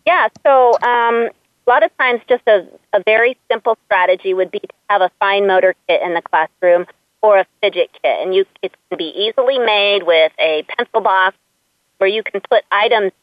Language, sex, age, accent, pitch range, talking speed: English, female, 40-59, American, 180-225 Hz, 200 wpm